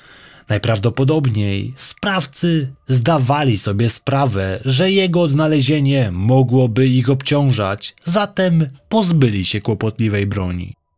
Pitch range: 105-145 Hz